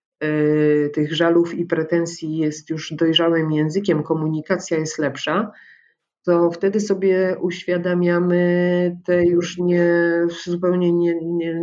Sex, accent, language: female, native, Polish